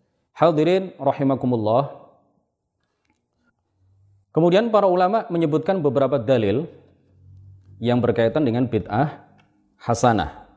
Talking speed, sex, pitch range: 75 wpm, male, 110-135 Hz